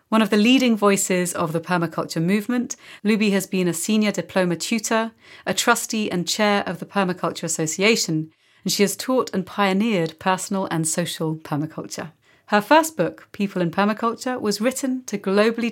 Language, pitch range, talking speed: English, 170-210 Hz, 170 wpm